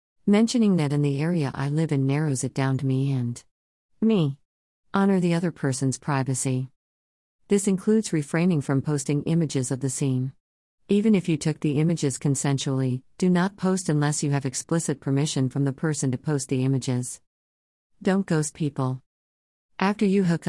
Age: 50-69